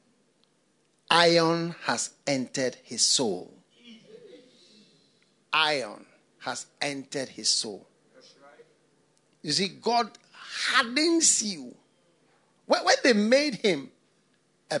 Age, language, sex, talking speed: 50-69, English, male, 80 wpm